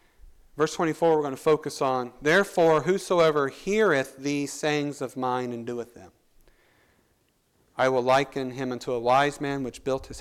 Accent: American